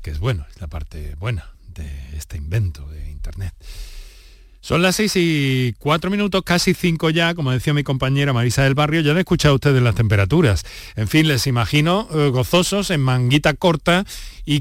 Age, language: 40-59, Spanish